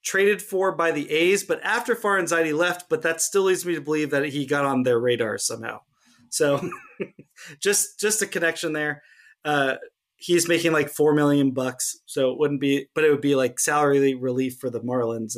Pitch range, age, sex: 135-170 Hz, 30-49, male